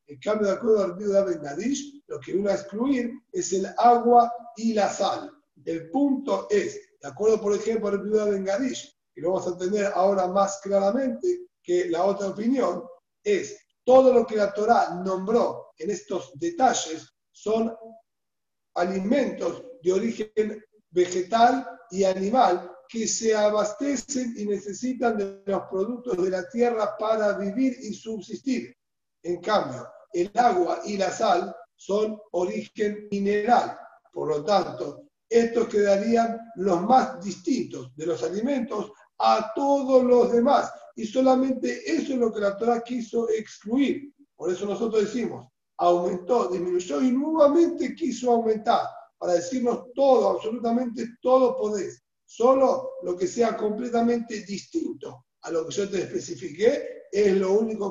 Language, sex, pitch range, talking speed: Spanish, male, 195-255 Hz, 145 wpm